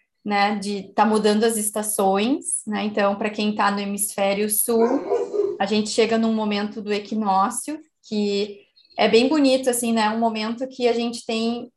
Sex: female